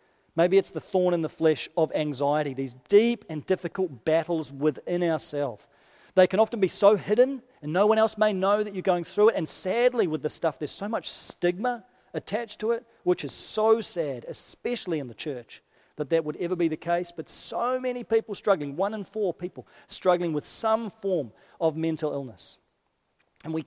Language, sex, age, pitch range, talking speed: English, male, 40-59, 160-210 Hz, 200 wpm